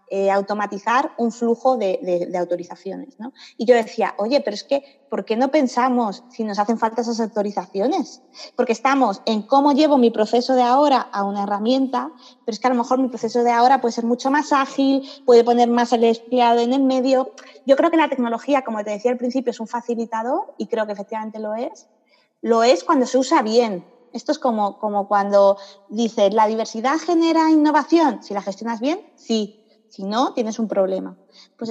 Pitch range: 215-255 Hz